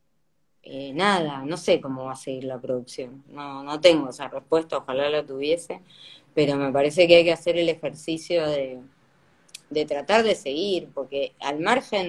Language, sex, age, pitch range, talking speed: Spanish, female, 20-39, 140-185 Hz, 175 wpm